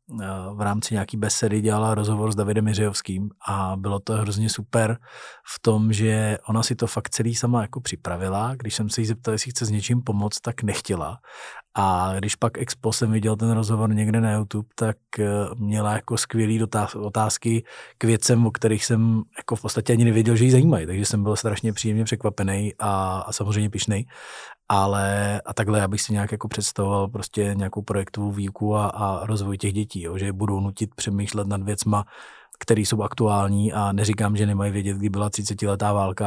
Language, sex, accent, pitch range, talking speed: Czech, male, native, 100-110 Hz, 185 wpm